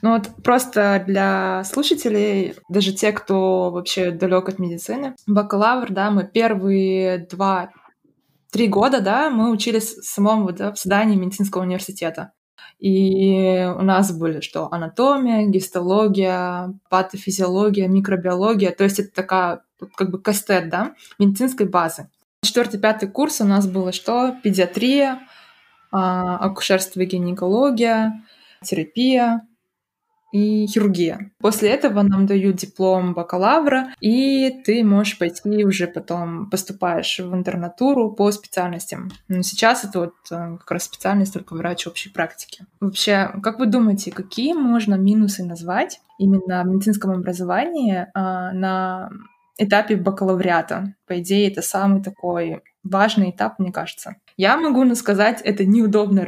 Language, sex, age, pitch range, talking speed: Russian, female, 20-39, 185-220 Hz, 125 wpm